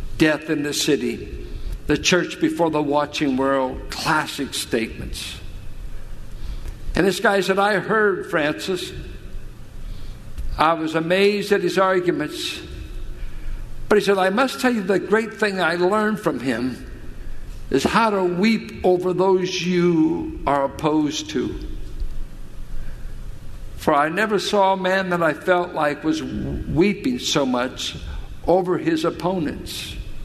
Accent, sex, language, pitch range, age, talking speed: American, male, English, 130-185 Hz, 60-79, 130 wpm